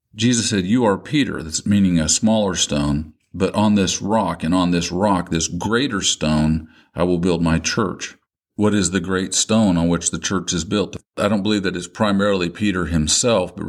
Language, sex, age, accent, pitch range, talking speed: English, male, 50-69, American, 85-105 Hz, 200 wpm